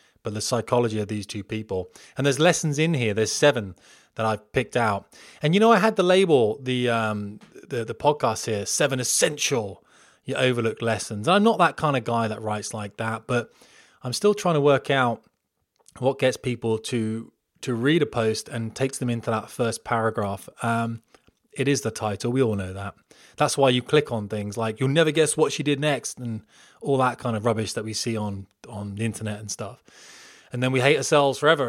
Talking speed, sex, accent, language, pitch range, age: 215 wpm, male, British, English, 110-140 Hz, 20-39